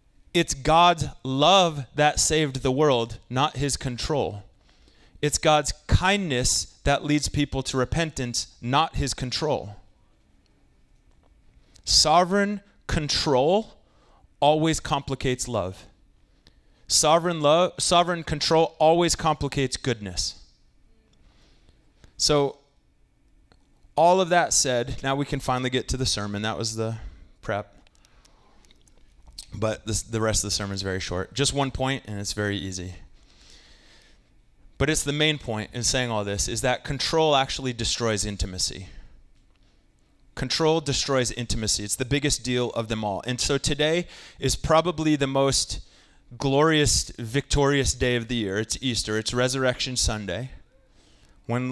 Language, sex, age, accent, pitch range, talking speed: English, male, 30-49, American, 105-145 Hz, 130 wpm